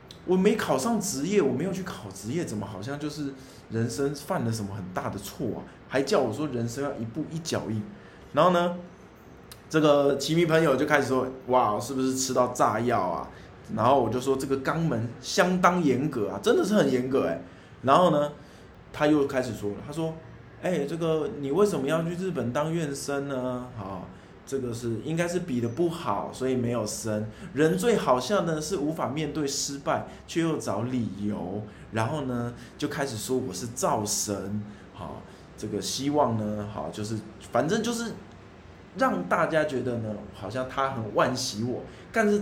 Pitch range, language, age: 110-155 Hz, Chinese, 20-39